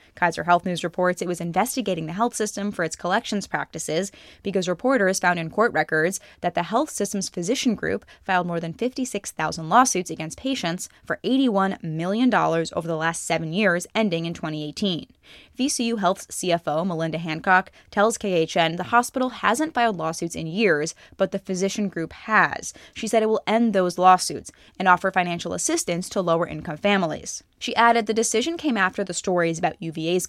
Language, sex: English, female